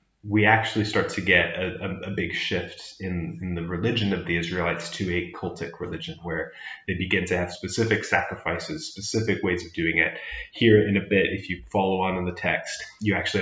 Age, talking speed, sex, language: 30-49, 200 wpm, male, English